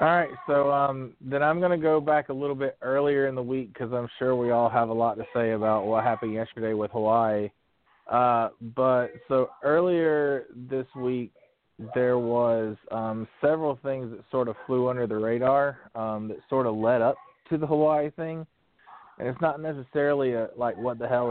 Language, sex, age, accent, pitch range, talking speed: English, male, 20-39, American, 115-135 Hz, 195 wpm